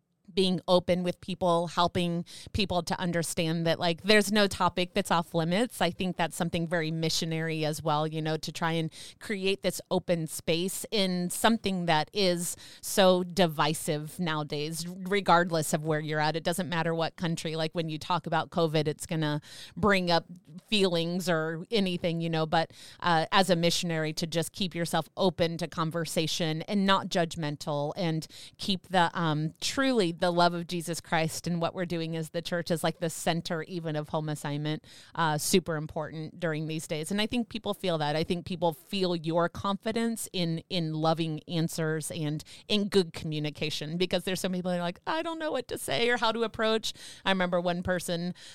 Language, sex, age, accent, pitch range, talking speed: English, female, 30-49, American, 165-200 Hz, 190 wpm